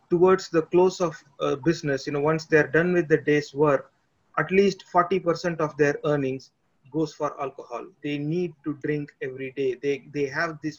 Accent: Indian